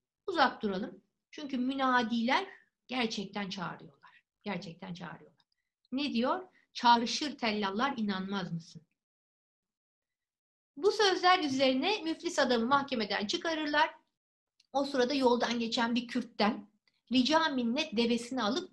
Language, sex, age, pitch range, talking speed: Turkish, female, 60-79, 205-280 Hz, 100 wpm